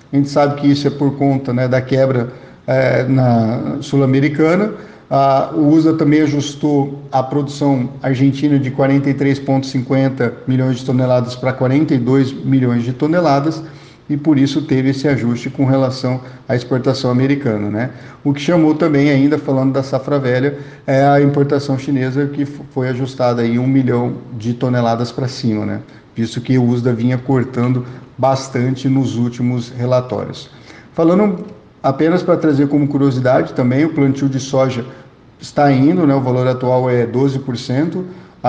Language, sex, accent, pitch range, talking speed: Portuguese, male, Brazilian, 130-145 Hz, 155 wpm